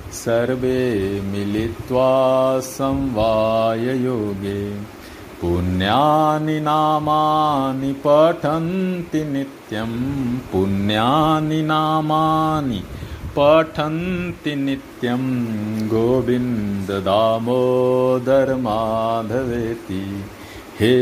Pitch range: 110-135 Hz